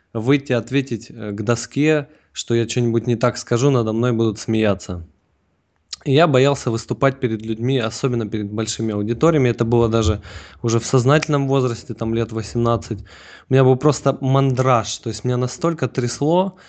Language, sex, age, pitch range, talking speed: Russian, male, 20-39, 110-135 Hz, 160 wpm